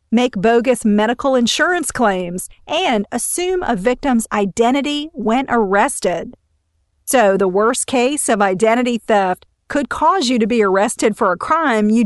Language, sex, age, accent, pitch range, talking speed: English, female, 40-59, American, 200-250 Hz, 145 wpm